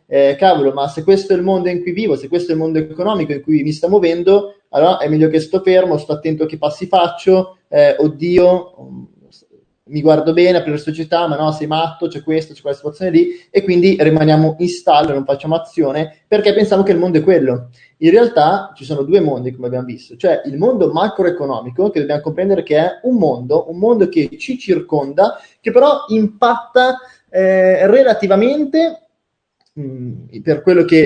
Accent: native